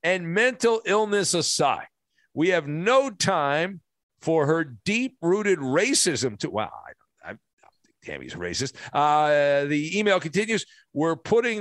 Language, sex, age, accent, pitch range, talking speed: English, male, 50-69, American, 120-185 Hz, 140 wpm